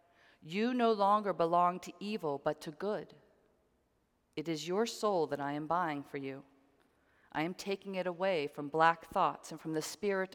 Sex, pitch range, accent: female, 155-195 Hz, American